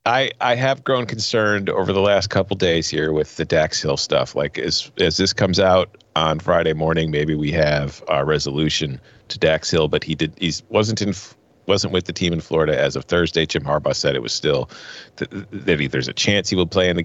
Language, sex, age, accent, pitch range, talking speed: English, male, 40-59, American, 85-130 Hz, 235 wpm